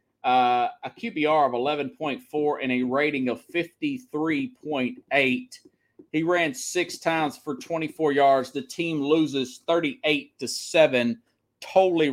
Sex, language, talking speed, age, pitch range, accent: male, English, 115 wpm, 30-49, 135-185 Hz, American